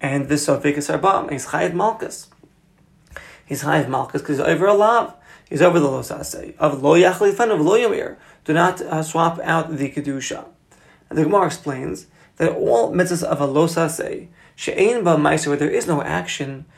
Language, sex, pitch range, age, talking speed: English, male, 150-175 Hz, 30-49, 155 wpm